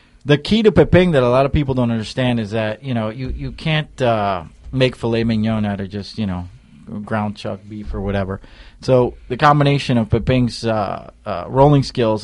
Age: 30-49